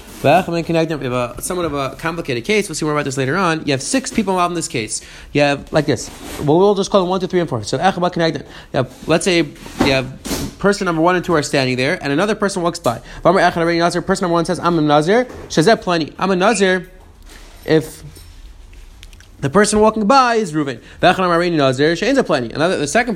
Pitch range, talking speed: 150-195 Hz, 200 wpm